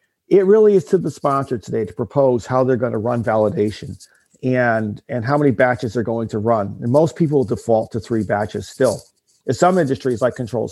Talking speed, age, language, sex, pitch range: 205 wpm, 50-69, English, male, 120-150 Hz